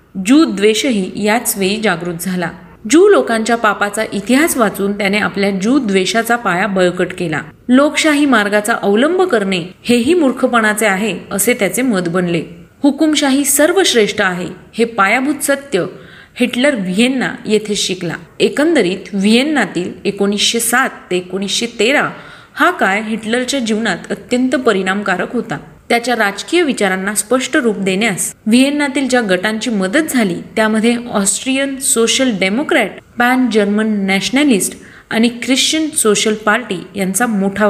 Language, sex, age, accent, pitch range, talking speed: Marathi, female, 30-49, native, 195-255 Hz, 95 wpm